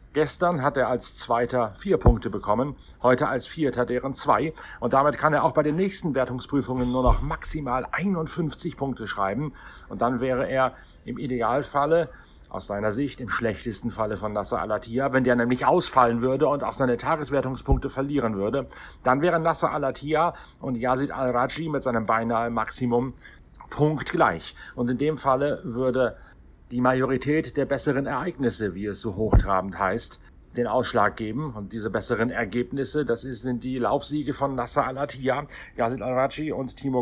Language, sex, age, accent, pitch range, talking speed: German, male, 50-69, German, 115-140 Hz, 160 wpm